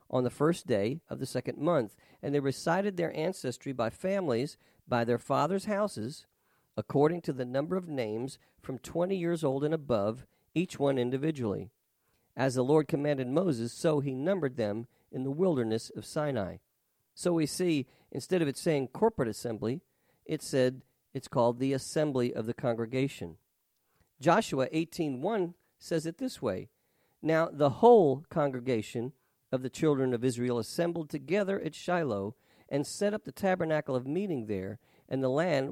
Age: 50-69